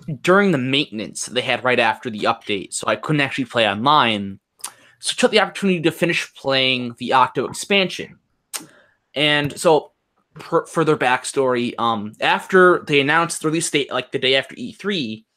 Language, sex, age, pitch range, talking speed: English, male, 20-39, 135-175 Hz, 165 wpm